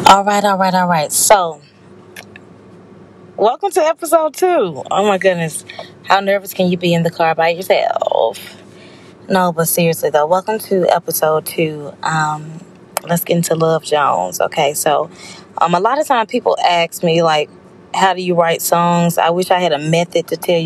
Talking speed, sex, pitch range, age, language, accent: 180 wpm, female, 160-190 Hz, 20-39, English, American